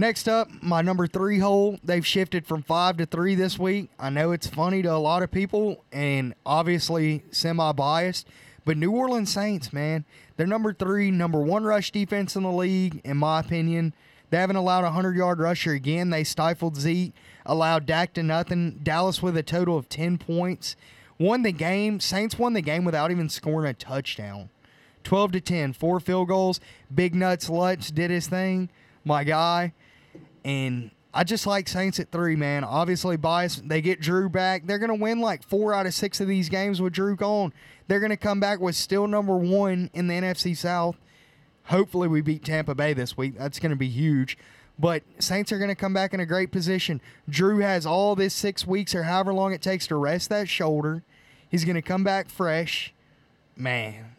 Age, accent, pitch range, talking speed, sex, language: 20-39, American, 155-190 Hz, 195 wpm, male, English